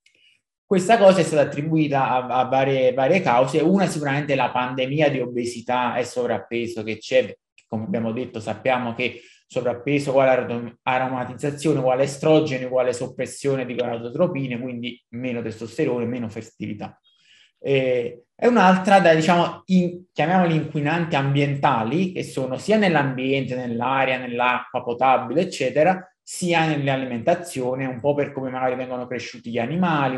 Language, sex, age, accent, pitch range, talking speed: Italian, male, 20-39, native, 125-165 Hz, 135 wpm